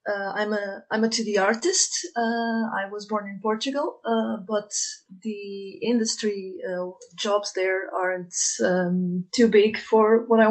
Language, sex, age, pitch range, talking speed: English, female, 30-49, 200-245 Hz, 155 wpm